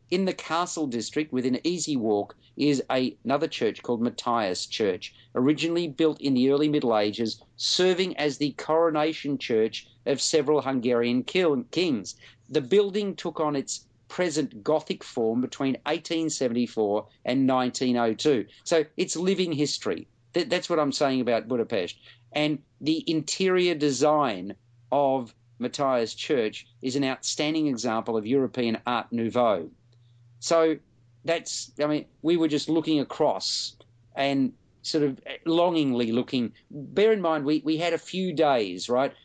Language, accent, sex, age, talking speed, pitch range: English, Australian, male, 50-69, 140 wpm, 120-155 Hz